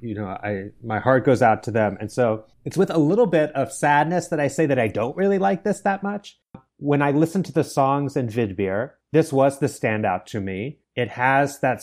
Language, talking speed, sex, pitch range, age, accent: English, 235 wpm, male, 120-155 Hz, 30-49, American